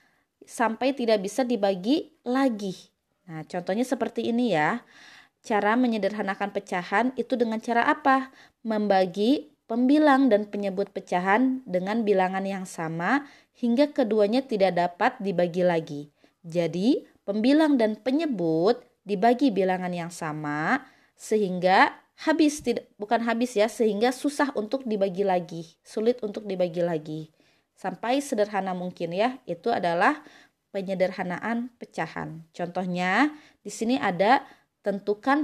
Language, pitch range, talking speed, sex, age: Malay, 185-255 Hz, 115 wpm, female, 20-39